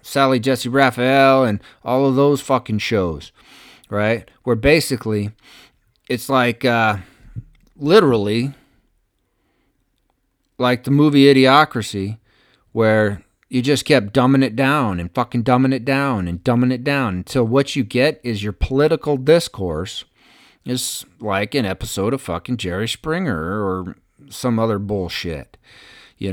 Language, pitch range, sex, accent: English, 105-135 Hz, male, American